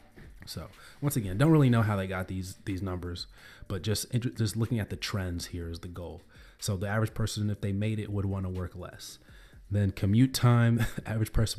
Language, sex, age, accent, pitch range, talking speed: English, male, 30-49, American, 95-105 Hz, 210 wpm